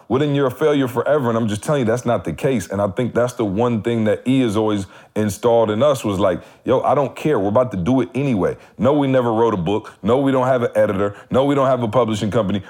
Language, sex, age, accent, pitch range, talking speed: English, male, 40-59, American, 105-130 Hz, 290 wpm